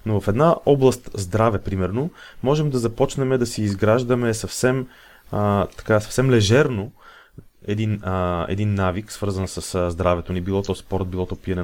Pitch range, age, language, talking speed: 95-120 Hz, 30-49, Bulgarian, 155 wpm